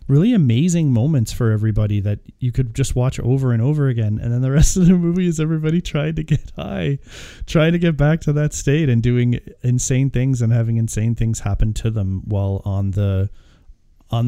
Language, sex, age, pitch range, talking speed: English, male, 30-49, 105-130 Hz, 205 wpm